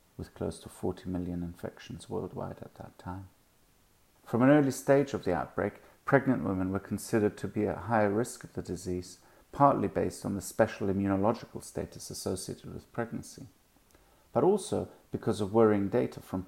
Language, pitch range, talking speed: English, 95-115 Hz, 170 wpm